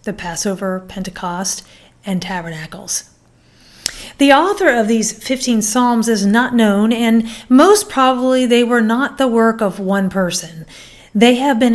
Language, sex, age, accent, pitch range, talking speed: English, female, 40-59, American, 200-255 Hz, 145 wpm